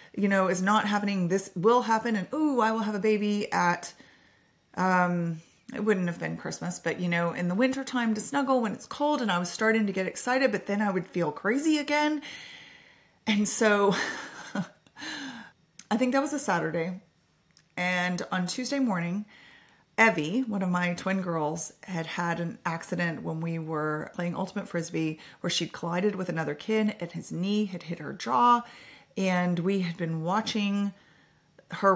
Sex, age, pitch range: female, 30-49, 165-210 Hz